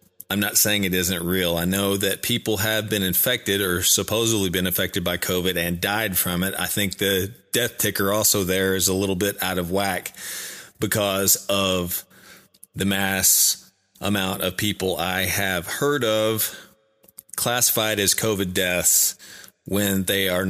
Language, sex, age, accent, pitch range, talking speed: English, male, 30-49, American, 95-105 Hz, 160 wpm